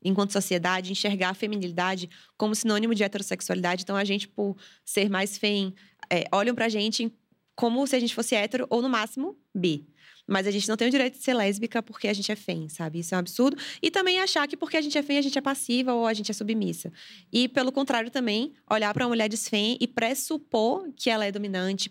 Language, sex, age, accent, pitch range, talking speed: Portuguese, female, 20-39, Brazilian, 195-255 Hz, 230 wpm